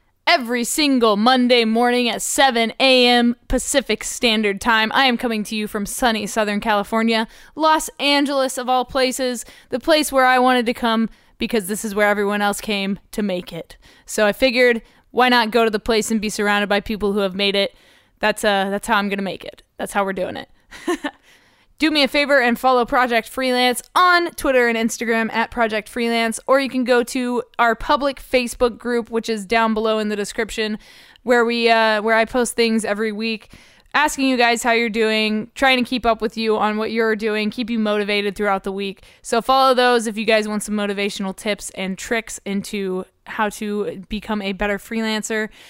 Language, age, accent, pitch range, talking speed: English, 20-39, American, 210-250 Hz, 200 wpm